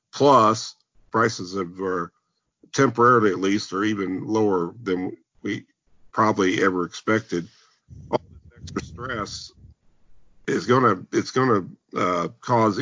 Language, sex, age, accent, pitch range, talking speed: English, male, 50-69, American, 95-115 Hz, 115 wpm